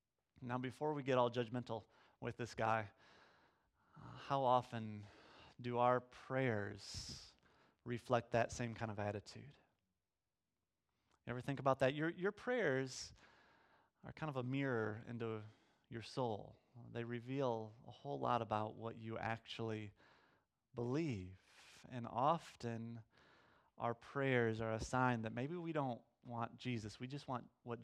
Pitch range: 115-140 Hz